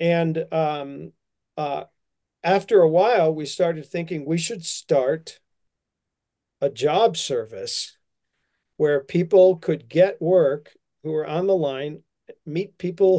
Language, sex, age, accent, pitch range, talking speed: English, male, 50-69, American, 145-185 Hz, 125 wpm